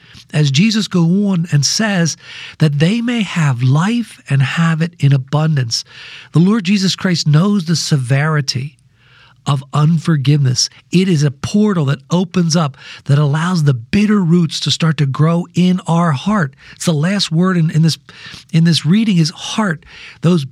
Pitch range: 140-180 Hz